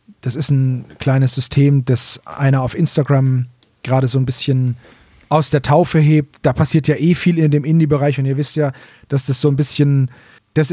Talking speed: 195 wpm